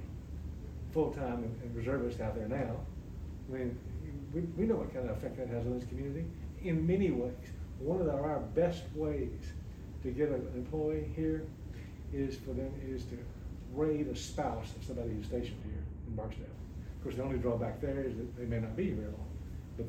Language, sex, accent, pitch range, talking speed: English, male, American, 80-125 Hz, 195 wpm